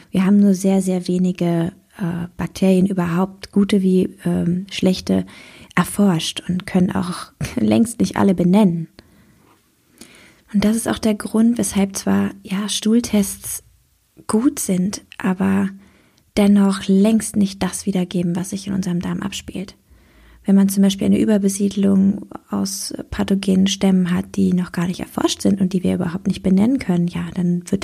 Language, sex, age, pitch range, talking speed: German, female, 20-39, 190-205 Hz, 150 wpm